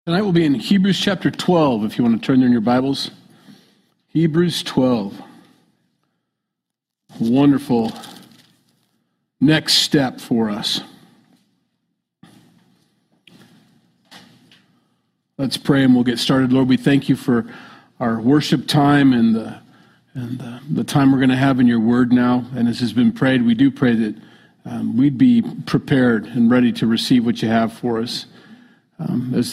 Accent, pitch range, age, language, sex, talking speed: American, 120-145 Hz, 40-59, English, male, 150 wpm